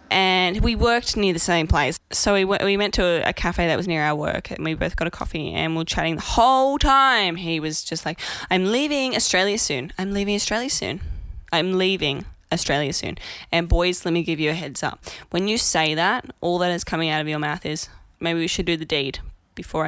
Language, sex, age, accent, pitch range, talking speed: English, female, 10-29, Australian, 160-200 Hz, 235 wpm